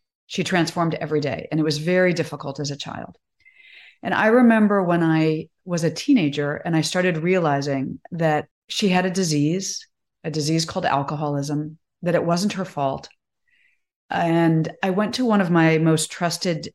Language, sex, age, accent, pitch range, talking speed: English, female, 40-59, American, 155-200 Hz, 170 wpm